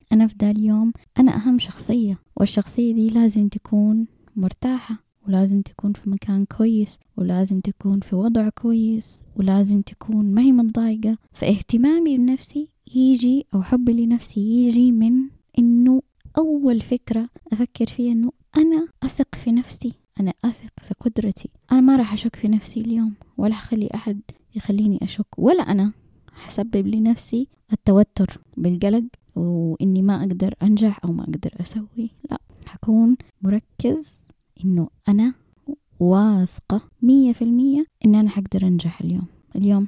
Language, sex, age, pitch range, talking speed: Arabic, female, 20-39, 200-245 Hz, 145 wpm